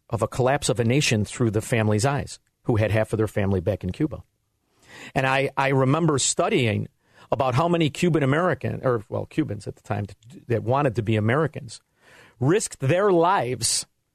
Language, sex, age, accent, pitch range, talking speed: English, male, 50-69, American, 120-180 Hz, 180 wpm